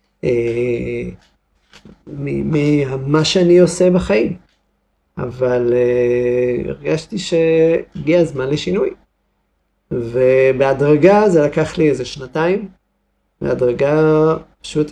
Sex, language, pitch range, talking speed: male, Hebrew, 125-160 Hz, 70 wpm